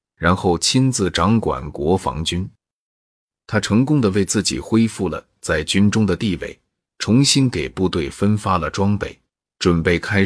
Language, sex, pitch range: Chinese, male, 85-110 Hz